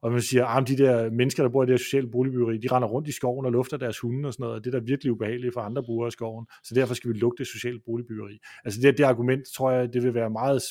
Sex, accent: male, native